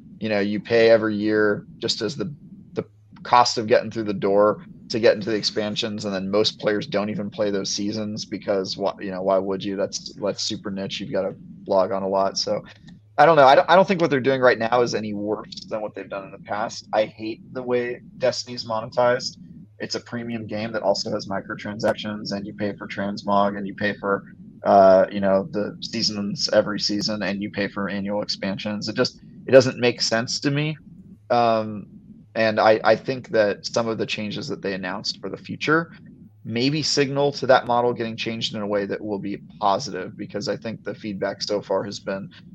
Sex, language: male, English